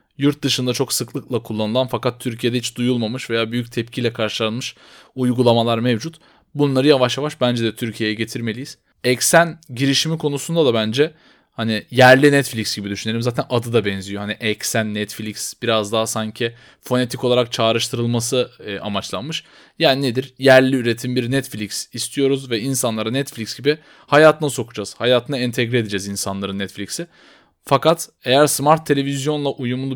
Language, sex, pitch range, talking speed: Turkish, male, 115-145 Hz, 140 wpm